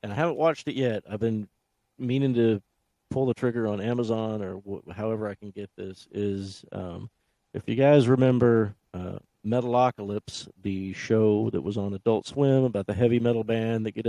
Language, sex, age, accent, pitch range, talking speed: English, male, 50-69, American, 100-120 Hz, 185 wpm